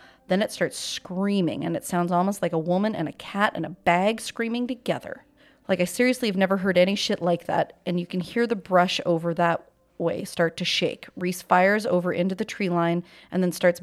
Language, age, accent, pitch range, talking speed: English, 30-49, American, 170-190 Hz, 220 wpm